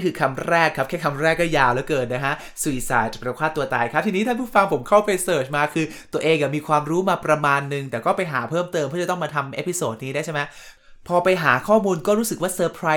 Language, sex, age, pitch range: Thai, male, 20-39, 130-170 Hz